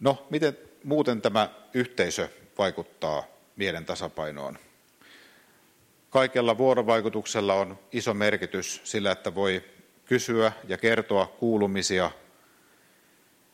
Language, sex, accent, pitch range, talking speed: Finnish, male, native, 90-115 Hz, 90 wpm